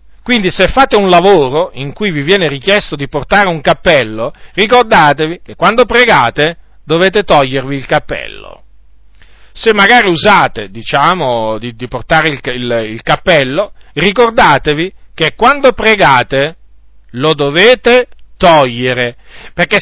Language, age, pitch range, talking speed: Italian, 40-59, 140-210 Hz, 120 wpm